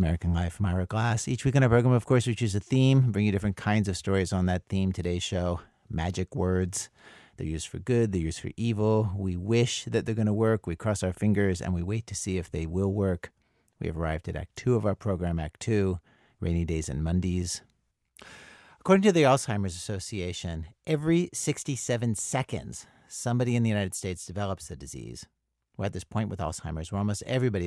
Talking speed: 210 wpm